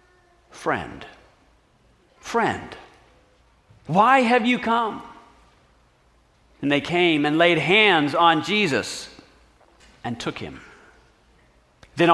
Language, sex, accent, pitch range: English, male, American, 160-250 Hz